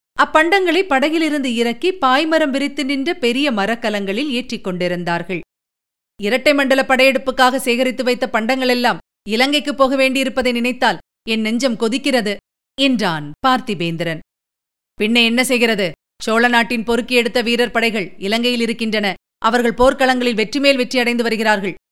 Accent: native